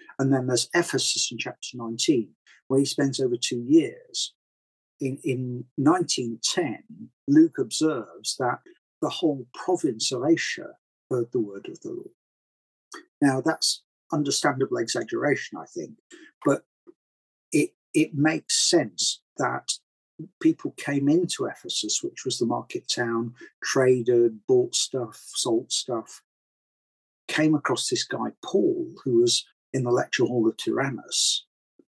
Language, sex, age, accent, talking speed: English, male, 50-69, British, 130 wpm